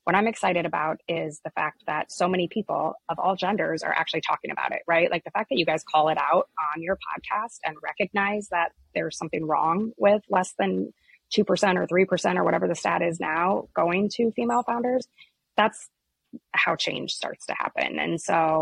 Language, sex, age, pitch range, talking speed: English, female, 20-39, 160-195 Hz, 200 wpm